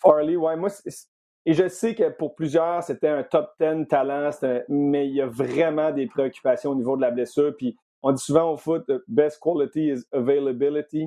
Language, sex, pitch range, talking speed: French, male, 135-160 Hz, 205 wpm